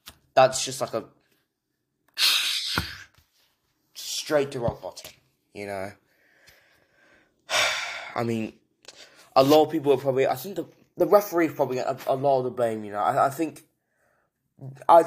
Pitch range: 130-170 Hz